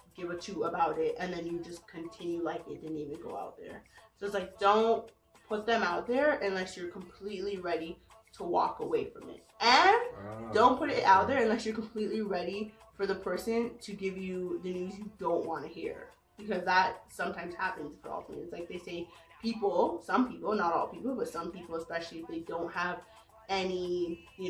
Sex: female